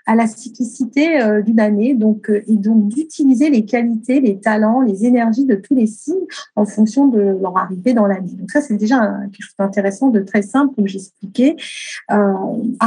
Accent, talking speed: French, 195 wpm